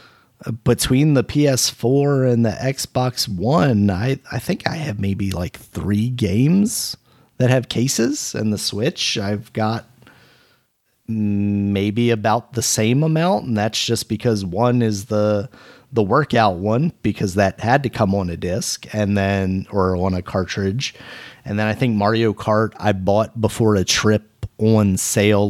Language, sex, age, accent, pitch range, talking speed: English, male, 30-49, American, 100-120 Hz, 155 wpm